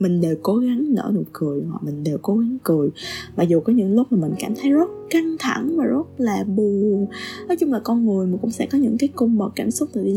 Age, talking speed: 20-39, 270 wpm